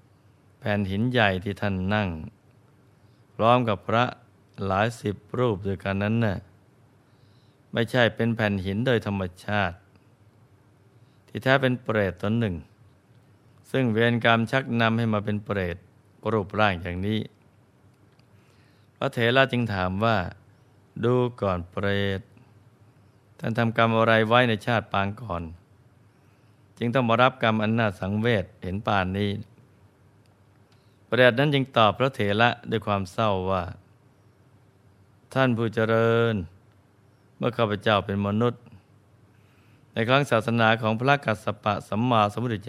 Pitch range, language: 100-120 Hz, Thai